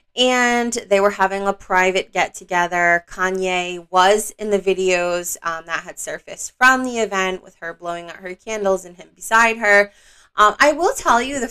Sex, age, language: female, 20-39, English